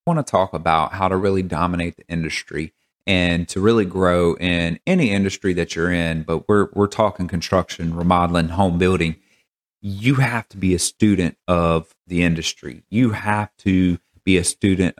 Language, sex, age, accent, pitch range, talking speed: English, male, 30-49, American, 85-95 Hz, 175 wpm